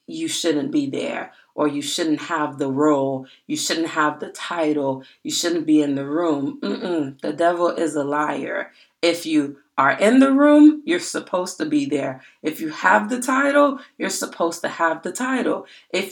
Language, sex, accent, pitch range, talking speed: English, female, American, 150-235 Hz, 190 wpm